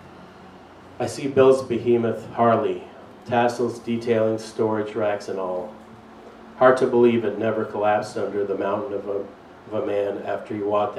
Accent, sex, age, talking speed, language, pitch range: American, male, 40-59, 155 wpm, English, 100-120 Hz